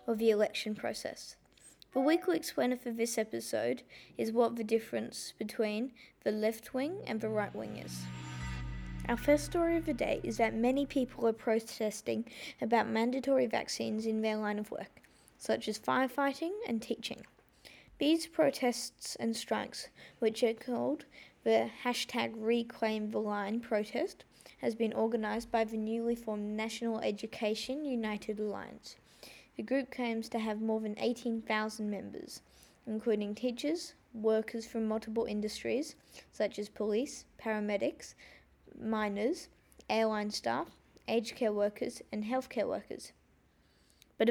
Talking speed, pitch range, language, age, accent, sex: 135 wpm, 210-245 Hz, English, 10-29, Australian, female